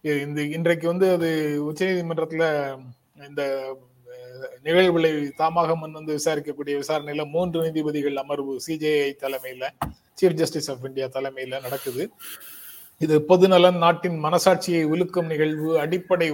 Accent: native